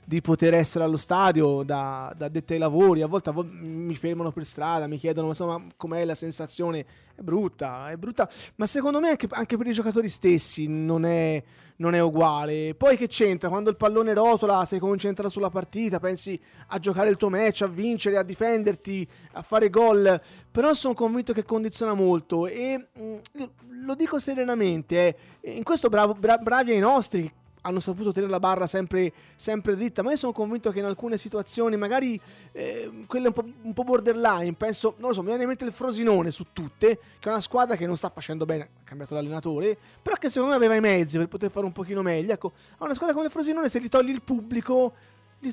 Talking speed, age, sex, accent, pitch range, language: 210 wpm, 20-39, male, native, 170-235 Hz, Italian